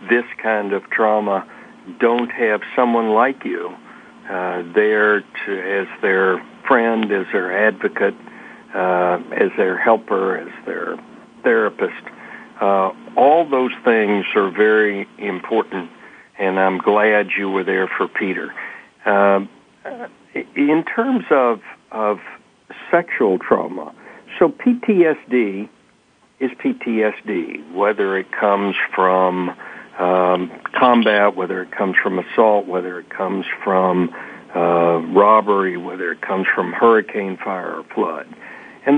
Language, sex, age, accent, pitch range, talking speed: English, male, 60-79, American, 95-115 Hz, 120 wpm